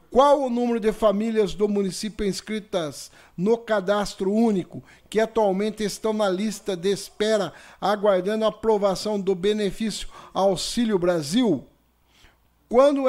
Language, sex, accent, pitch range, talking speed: Portuguese, male, Brazilian, 195-230 Hz, 120 wpm